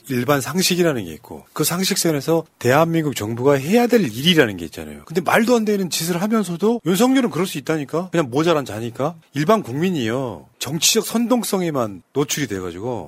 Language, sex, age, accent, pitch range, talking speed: English, male, 40-59, Korean, 120-185 Hz, 145 wpm